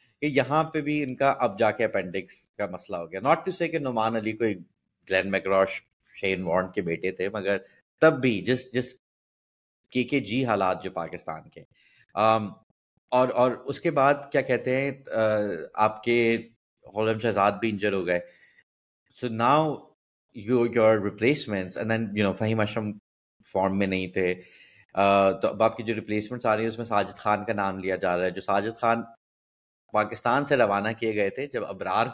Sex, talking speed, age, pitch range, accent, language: male, 130 wpm, 30-49, 95-125 Hz, Indian, English